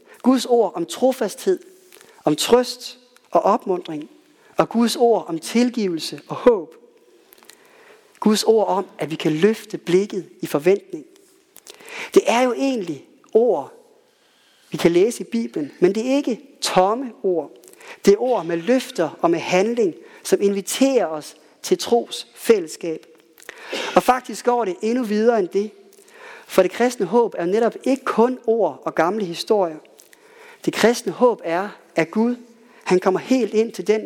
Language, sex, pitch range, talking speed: Danish, male, 190-295 Hz, 155 wpm